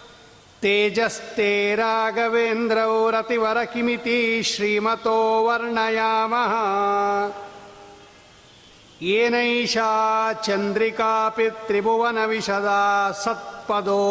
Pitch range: 200-230 Hz